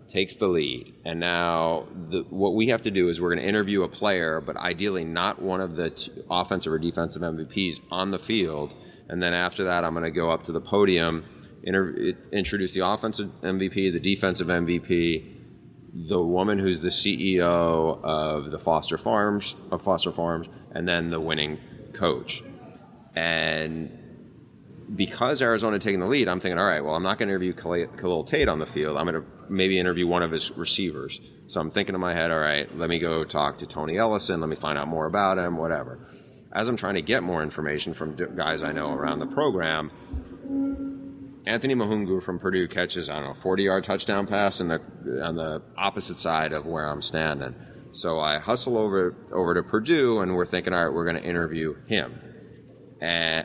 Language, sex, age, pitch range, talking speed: English, male, 30-49, 80-95 Hz, 195 wpm